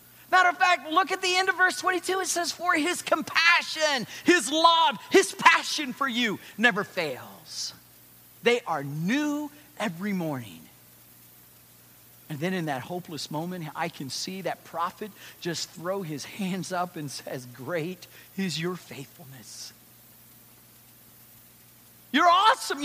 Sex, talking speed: male, 135 wpm